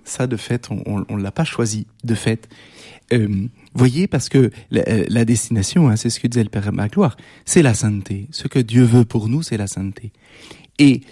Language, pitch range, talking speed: French, 115-170 Hz, 205 wpm